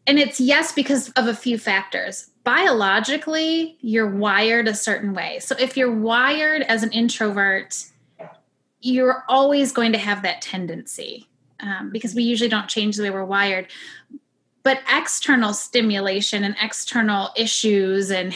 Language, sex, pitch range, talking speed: English, female, 215-270 Hz, 145 wpm